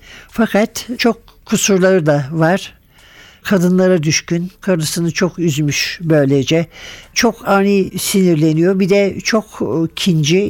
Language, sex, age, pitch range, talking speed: Turkish, male, 60-79, 160-190 Hz, 105 wpm